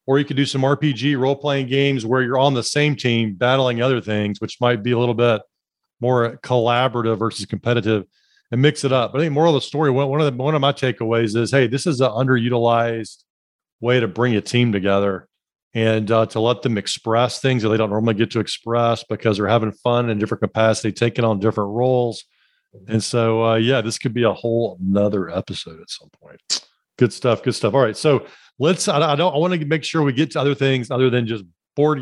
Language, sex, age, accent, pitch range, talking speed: English, male, 40-59, American, 115-140 Hz, 225 wpm